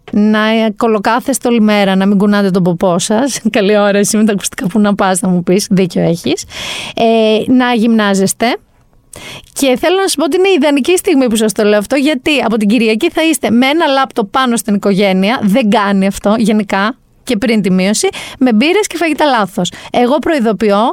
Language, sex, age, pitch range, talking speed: Greek, female, 30-49, 200-265 Hz, 190 wpm